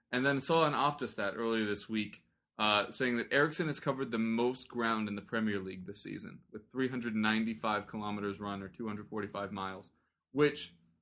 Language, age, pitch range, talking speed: English, 20-39, 105-135 Hz, 175 wpm